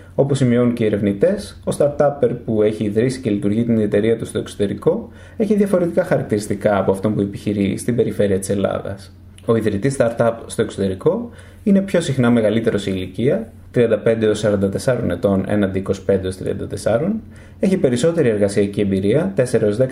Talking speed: 145 wpm